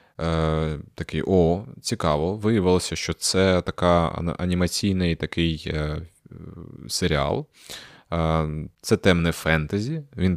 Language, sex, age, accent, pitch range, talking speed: Ukrainian, male, 20-39, native, 80-100 Hz, 80 wpm